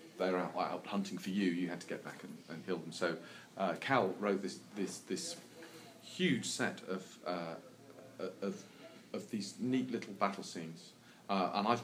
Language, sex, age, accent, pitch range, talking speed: English, male, 40-59, British, 90-120 Hz, 175 wpm